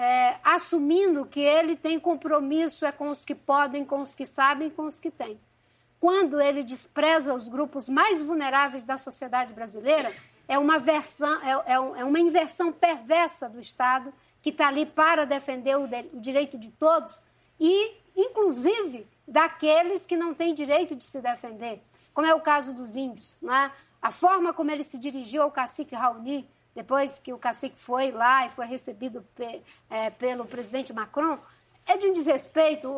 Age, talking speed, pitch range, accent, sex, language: 60-79, 175 wpm, 270-330 Hz, Brazilian, female, Portuguese